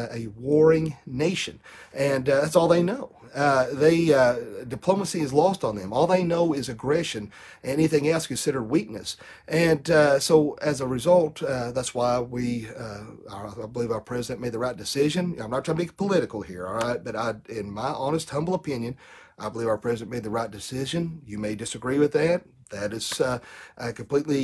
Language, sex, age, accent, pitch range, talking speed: English, male, 40-59, American, 120-160 Hz, 190 wpm